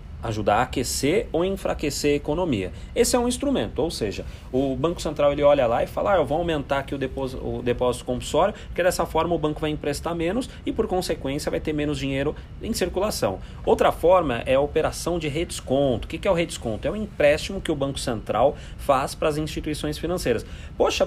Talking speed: 210 wpm